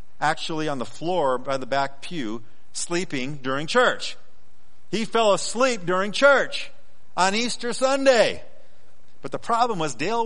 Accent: American